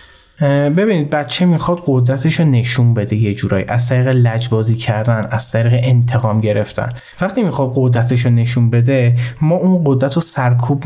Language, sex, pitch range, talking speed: Persian, male, 120-150 Hz, 150 wpm